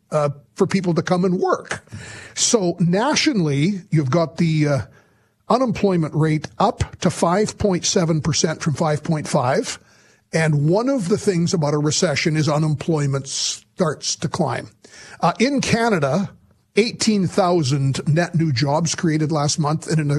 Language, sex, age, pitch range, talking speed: English, male, 50-69, 150-190 Hz, 135 wpm